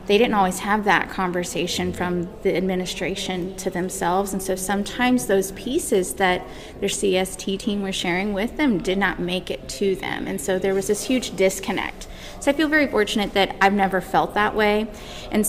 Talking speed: 190 wpm